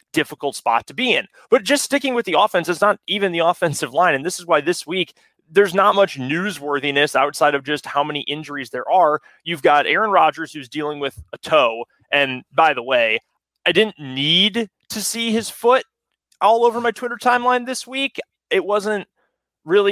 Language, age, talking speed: English, 30-49, 195 wpm